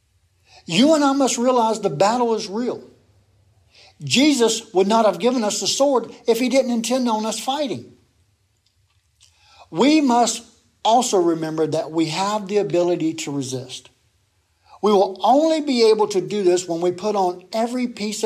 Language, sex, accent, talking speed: English, male, American, 160 wpm